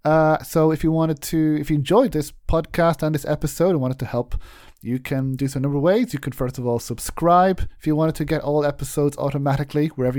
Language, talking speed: English, 245 wpm